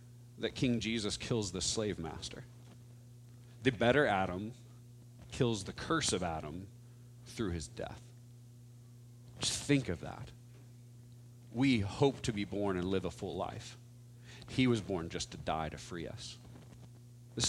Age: 40-59